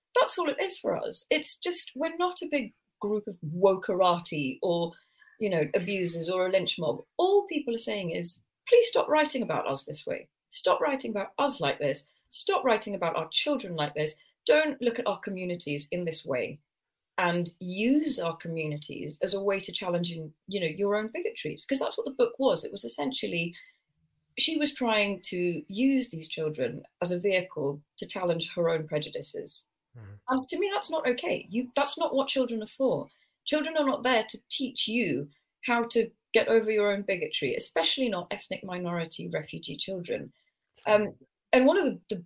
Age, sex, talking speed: 30-49, female, 190 wpm